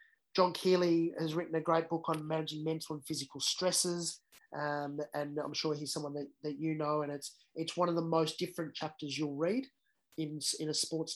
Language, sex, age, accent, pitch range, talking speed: English, male, 30-49, Australian, 145-165 Hz, 205 wpm